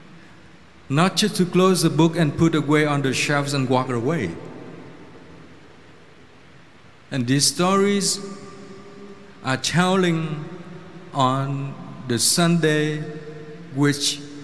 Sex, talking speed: male, 100 wpm